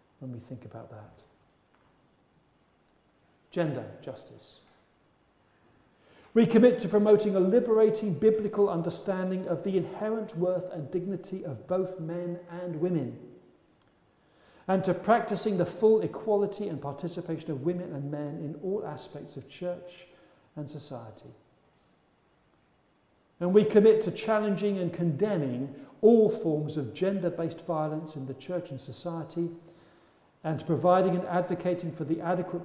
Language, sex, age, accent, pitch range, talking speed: English, male, 50-69, British, 155-200 Hz, 125 wpm